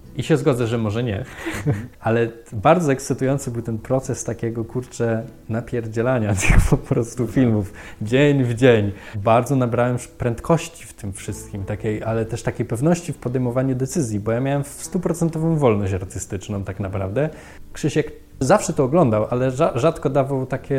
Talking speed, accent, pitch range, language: 150 wpm, native, 105-125 Hz, Polish